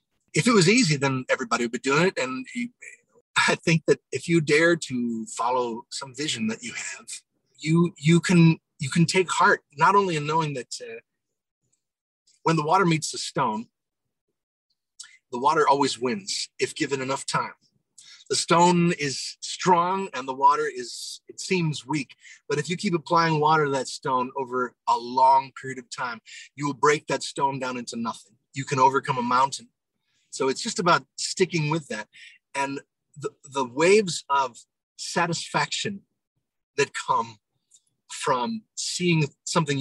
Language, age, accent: English, 30-49, American